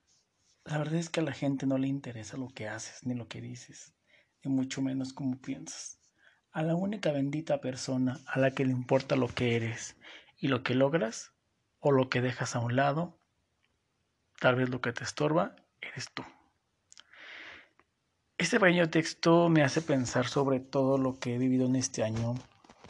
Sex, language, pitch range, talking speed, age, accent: male, Spanish, 125-150 Hz, 180 wpm, 50-69, Mexican